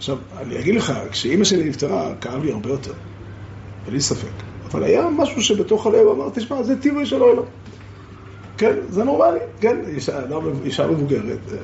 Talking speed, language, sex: 160 wpm, Hebrew, male